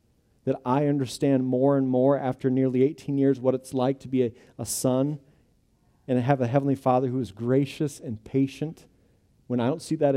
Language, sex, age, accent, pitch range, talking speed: English, male, 40-59, American, 115-135 Hz, 195 wpm